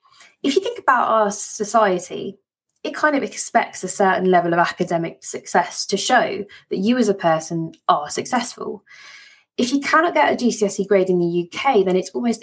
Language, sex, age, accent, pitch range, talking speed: English, female, 20-39, British, 185-225 Hz, 185 wpm